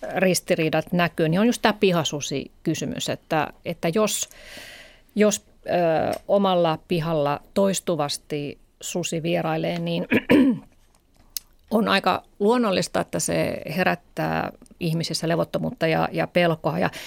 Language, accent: Finnish, native